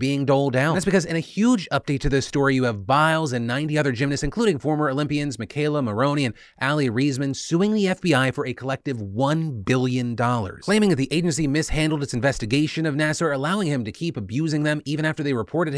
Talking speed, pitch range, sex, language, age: 205 wpm, 125-165 Hz, male, English, 30-49